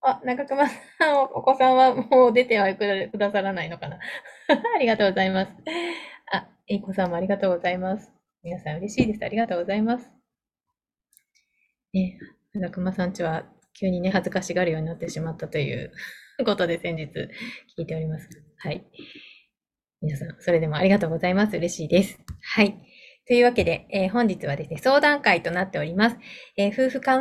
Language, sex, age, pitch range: Japanese, female, 20-39, 170-230 Hz